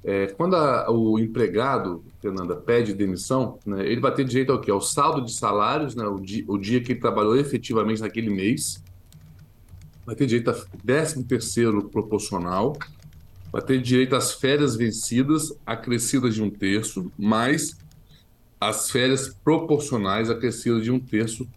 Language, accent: Portuguese, Brazilian